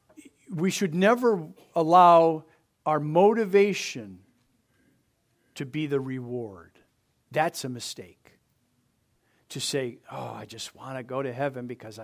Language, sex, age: English, male, 50-69